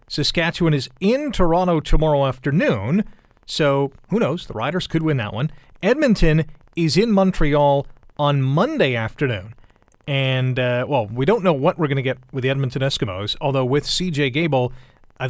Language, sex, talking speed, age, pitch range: English, male, 165 wpm, 40-59, 125-165 Hz